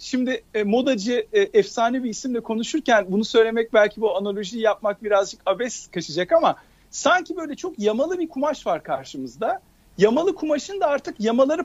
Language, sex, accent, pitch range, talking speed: Turkish, male, native, 210-295 Hz, 150 wpm